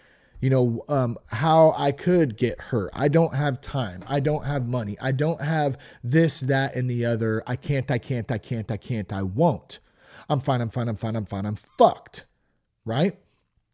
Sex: male